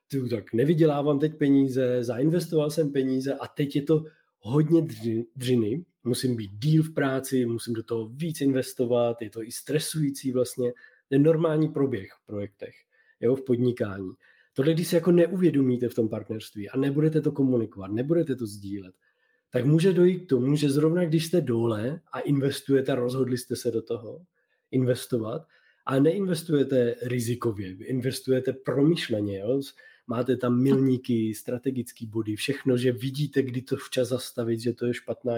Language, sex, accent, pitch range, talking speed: Czech, male, native, 125-160 Hz, 155 wpm